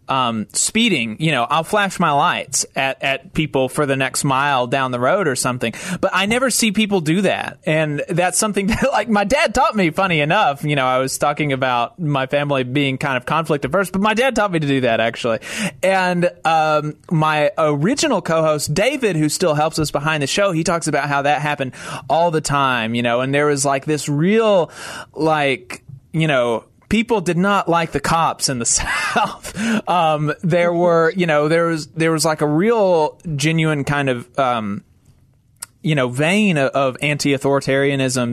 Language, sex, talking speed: English, male, 195 wpm